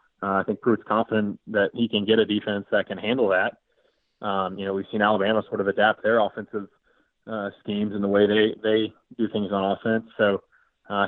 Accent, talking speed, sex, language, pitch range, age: American, 215 wpm, male, English, 100-110 Hz, 20-39